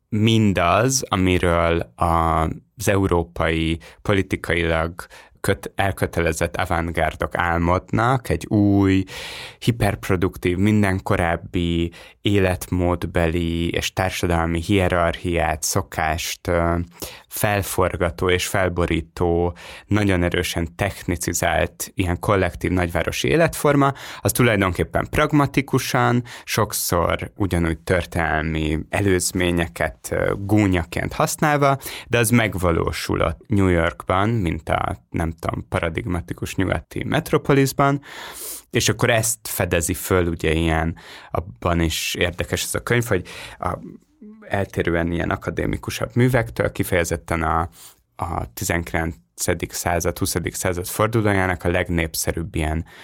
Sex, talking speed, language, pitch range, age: male, 90 wpm, Hungarian, 85-105 Hz, 20-39